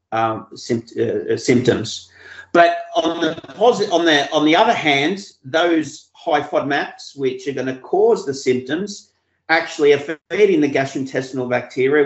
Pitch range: 140-230 Hz